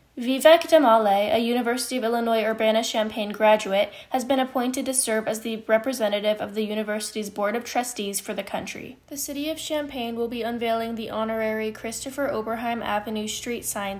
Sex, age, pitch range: female, 10-29, 215-250 Hz